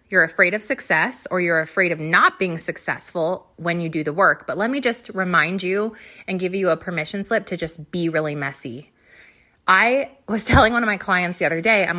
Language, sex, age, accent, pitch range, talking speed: English, female, 20-39, American, 180-235 Hz, 220 wpm